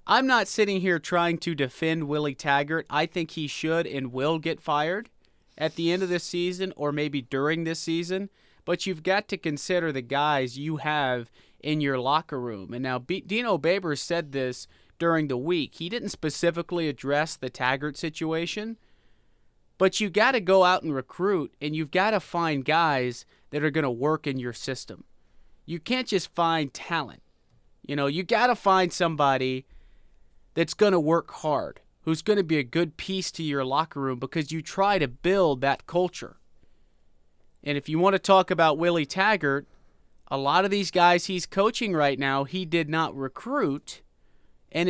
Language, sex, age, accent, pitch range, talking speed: English, male, 30-49, American, 135-175 Hz, 185 wpm